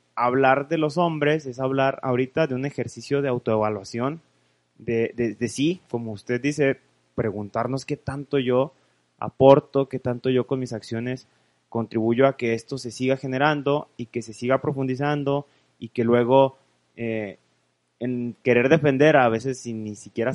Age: 30-49